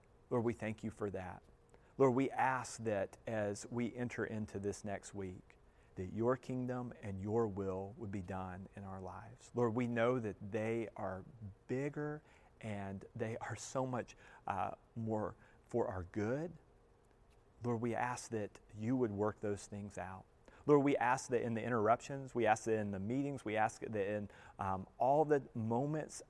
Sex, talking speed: male, 175 wpm